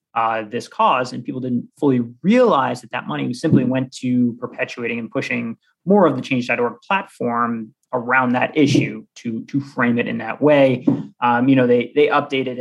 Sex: male